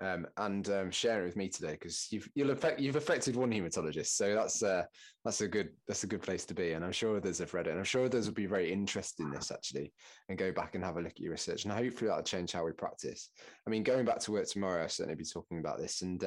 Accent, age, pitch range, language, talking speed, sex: British, 20-39, 80-105 Hz, English, 285 wpm, male